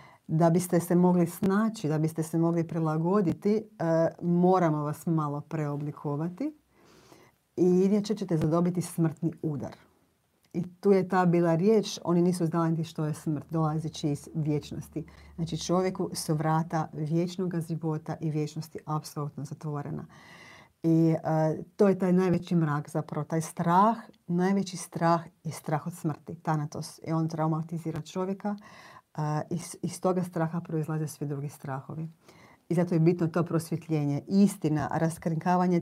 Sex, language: female, Croatian